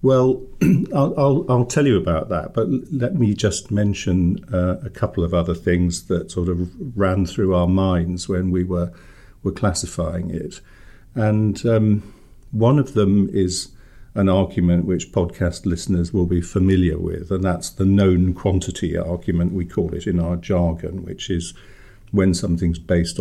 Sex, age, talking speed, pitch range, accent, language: male, 50-69, 165 wpm, 90-105 Hz, British, English